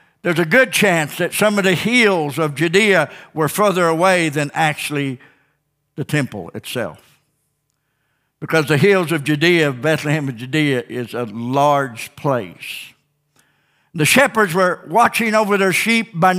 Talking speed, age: 145 wpm, 60-79